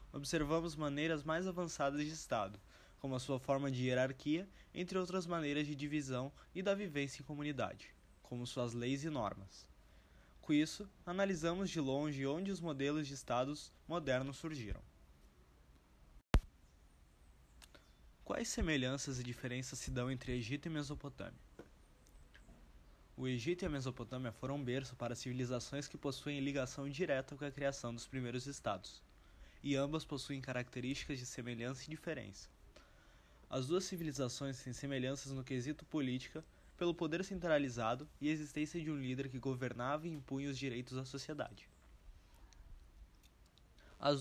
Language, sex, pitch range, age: Portuguese, male, 120-150 Hz, 20-39